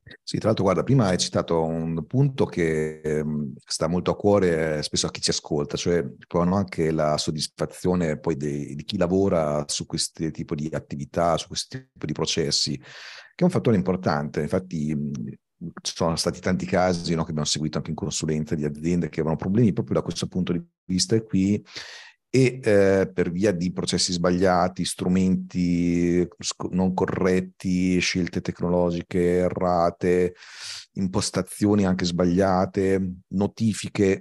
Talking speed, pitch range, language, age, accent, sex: 155 wpm, 80-95 Hz, Italian, 40-59, native, male